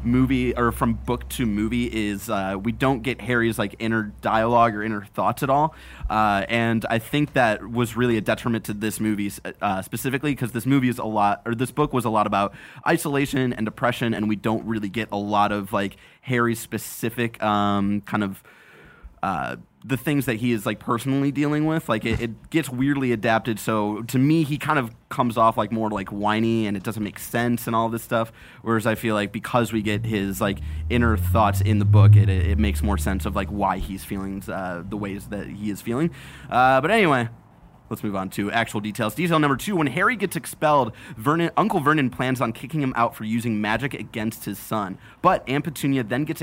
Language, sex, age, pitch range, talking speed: English, male, 20-39, 105-130 Hz, 215 wpm